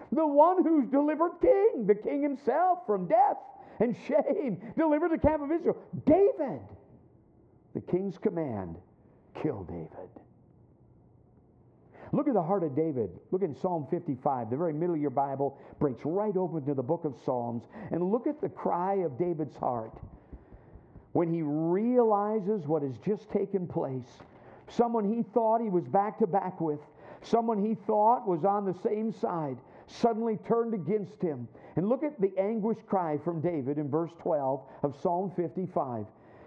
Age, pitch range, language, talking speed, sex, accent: 50-69, 160-235 Hz, English, 160 wpm, male, American